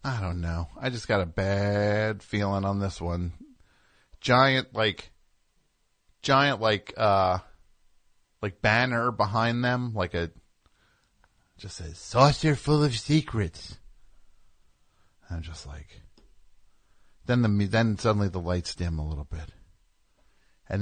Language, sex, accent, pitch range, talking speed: English, male, American, 85-105 Hz, 125 wpm